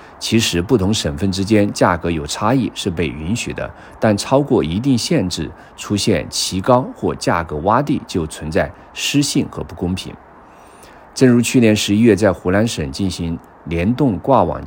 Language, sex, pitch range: Chinese, male, 85-110 Hz